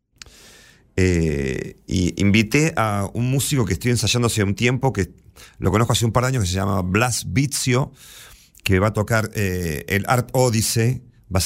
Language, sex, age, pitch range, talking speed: Spanish, male, 40-59, 90-115 Hz, 185 wpm